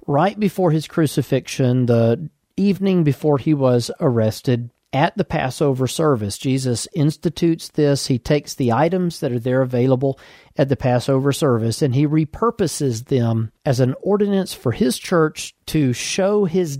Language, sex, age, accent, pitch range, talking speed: English, male, 40-59, American, 120-160 Hz, 150 wpm